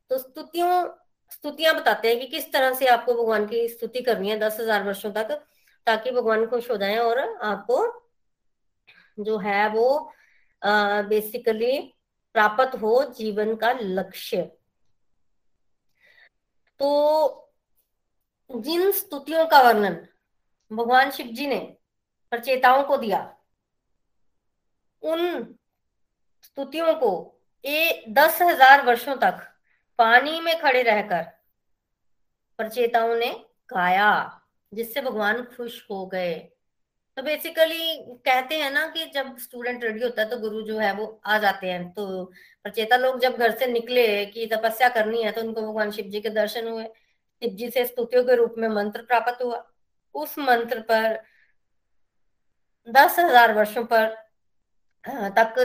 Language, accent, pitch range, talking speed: Hindi, native, 220-275 Hz, 130 wpm